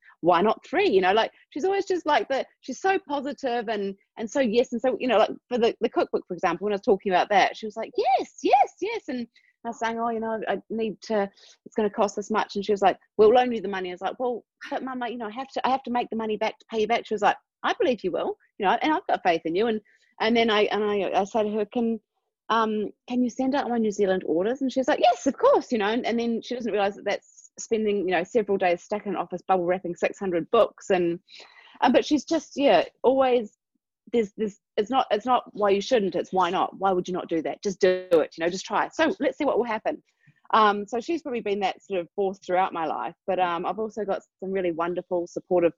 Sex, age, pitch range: female, 30-49, 180-240 Hz